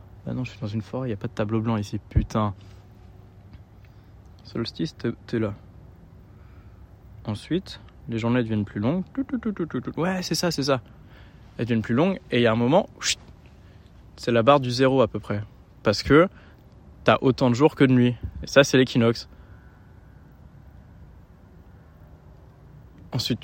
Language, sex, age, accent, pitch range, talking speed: French, male, 20-39, French, 100-130 Hz, 160 wpm